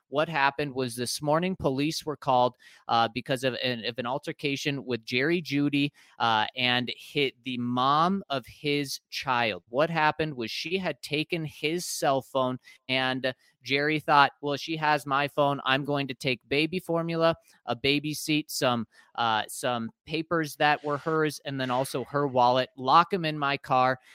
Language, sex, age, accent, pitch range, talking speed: English, male, 30-49, American, 130-150 Hz, 170 wpm